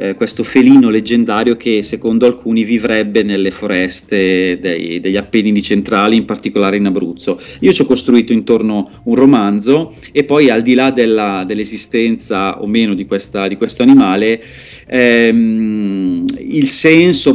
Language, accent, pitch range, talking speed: Italian, native, 105-130 Hz, 140 wpm